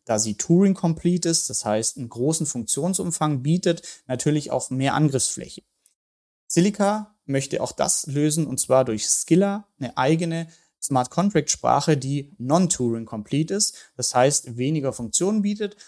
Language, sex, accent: German, male, German